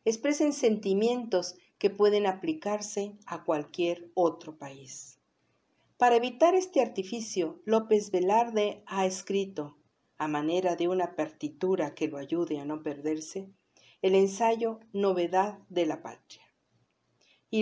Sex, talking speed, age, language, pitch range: female, 120 wpm, 50-69, Spanish, 160-210 Hz